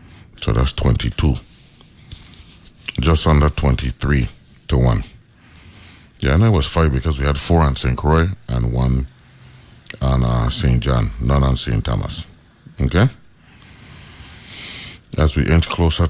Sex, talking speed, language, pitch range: male, 130 wpm, English, 70-85 Hz